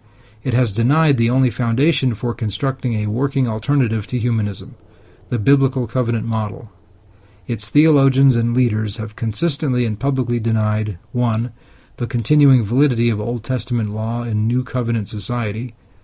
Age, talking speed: 40-59, 140 wpm